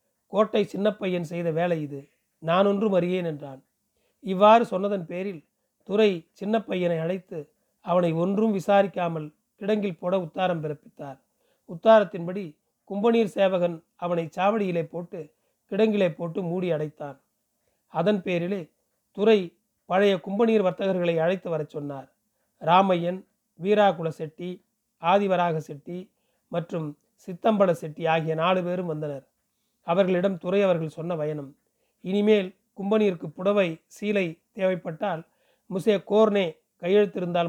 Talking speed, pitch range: 105 wpm, 170-205 Hz